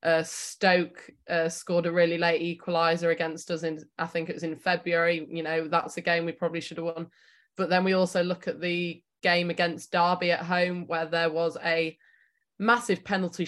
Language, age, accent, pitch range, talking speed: English, 20-39, British, 165-180 Hz, 200 wpm